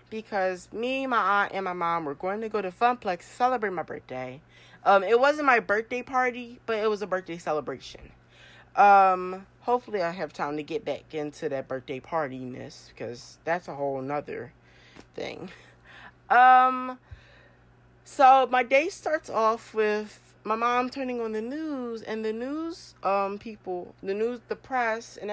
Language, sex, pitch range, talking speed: English, female, 165-245 Hz, 165 wpm